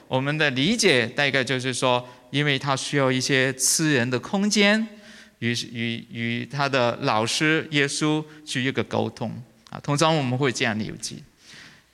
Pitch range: 120-165 Hz